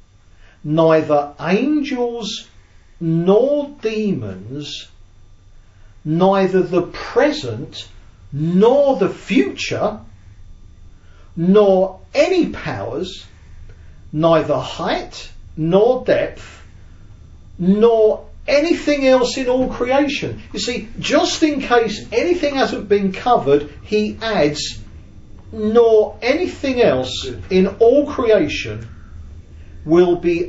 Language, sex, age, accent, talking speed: English, male, 40-59, British, 85 wpm